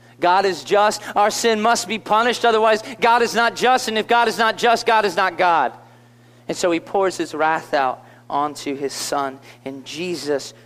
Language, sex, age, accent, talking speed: English, male, 40-59, American, 195 wpm